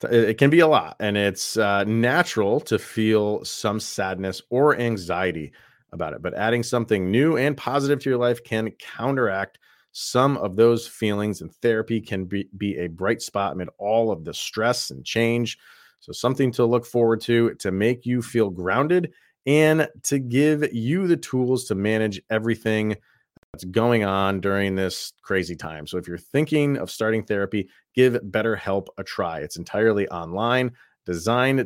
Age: 30-49